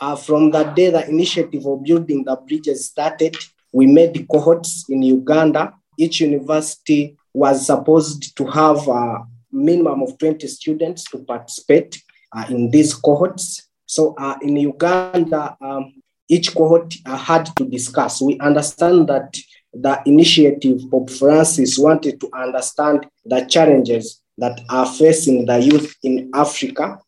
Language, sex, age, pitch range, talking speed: English, male, 30-49, 130-155 Hz, 140 wpm